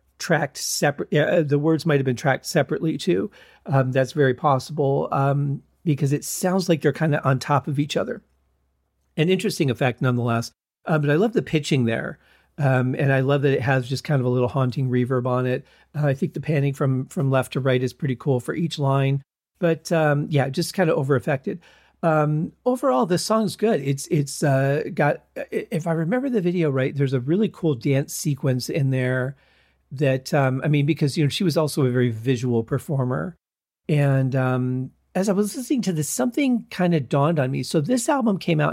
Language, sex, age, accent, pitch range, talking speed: English, male, 40-59, American, 130-170 Hz, 210 wpm